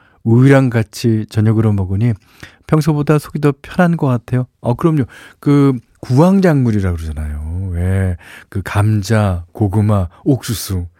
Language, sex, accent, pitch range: Korean, male, native, 95-125 Hz